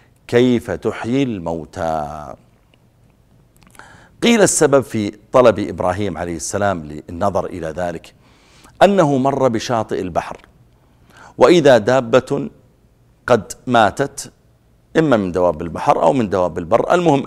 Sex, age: male, 50-69